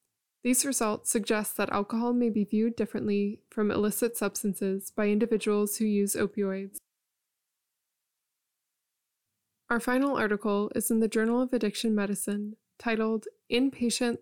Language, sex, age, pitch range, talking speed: English, female, 20-39, 205-230 Hz, 120 wpm